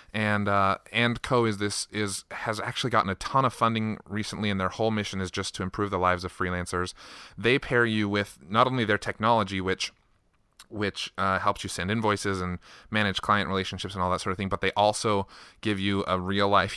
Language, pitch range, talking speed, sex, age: English, 95-115 Hz, 210 wpm, male, 30-49